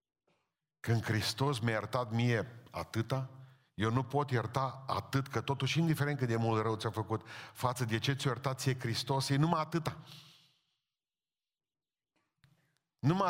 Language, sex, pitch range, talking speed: Romanian, male, 110-140 Hz, 150 wpm